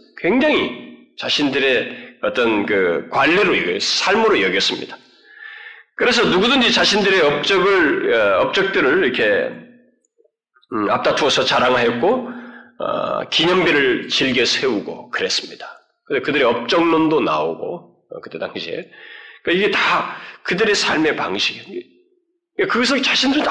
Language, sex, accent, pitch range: Korean, male, native, 230-385 Hz